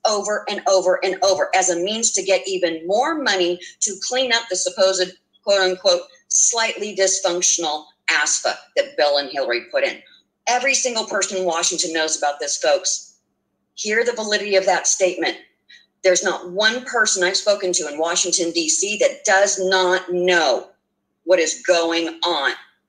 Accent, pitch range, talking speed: American, 180-225 Hz, 165 wpm